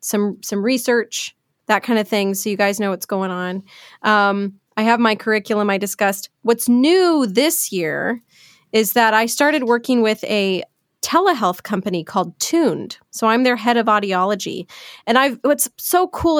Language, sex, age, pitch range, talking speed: English, female, 20-39, 205-250 Hz, 170 wpm